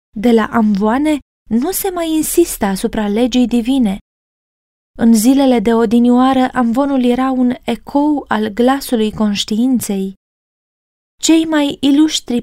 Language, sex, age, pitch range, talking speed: Romanian, female, 20-39, 210-255 Hz, 115 wpm